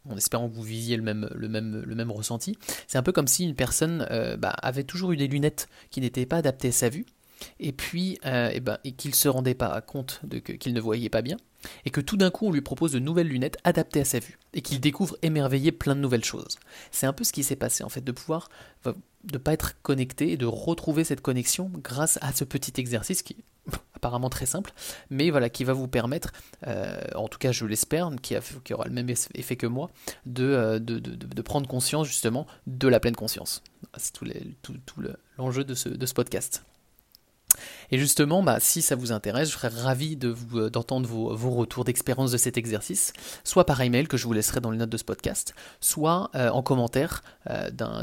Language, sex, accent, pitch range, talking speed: French, male, French, 120-150 Hz, 230 wpm